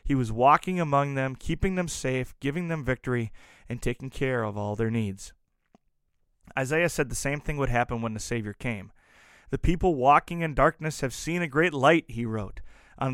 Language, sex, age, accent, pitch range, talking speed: English, male, 30-49, American, 115-160 Hz, 190 wpm